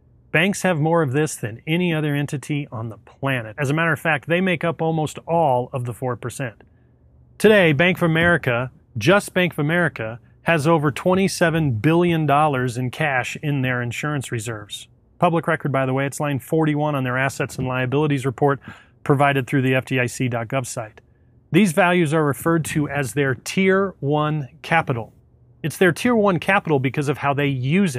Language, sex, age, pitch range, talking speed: English, male, 30-49, 125-165 Hz, 175 wpm